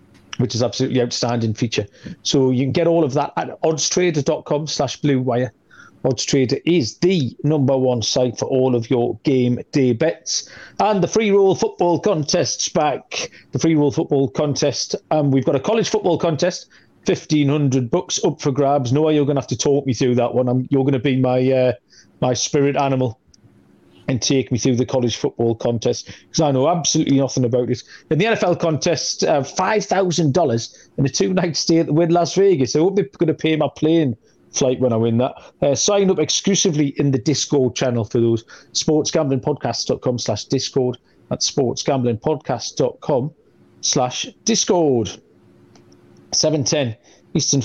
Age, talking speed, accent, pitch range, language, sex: 40-59, 175 wpm, British, 125-165 Hz, English, male